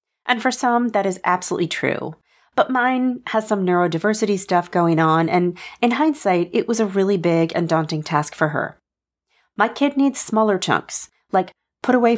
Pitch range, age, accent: 170-240 Hz, 30-49, American